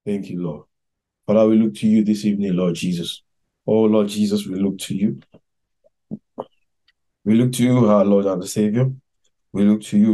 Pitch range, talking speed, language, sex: 100-110 Hz, 190 wpm, English, male